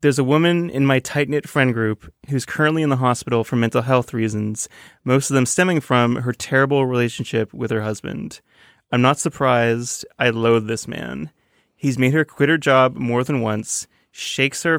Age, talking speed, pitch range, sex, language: 20-39, 185 wpm, 115-135 Hz, male, English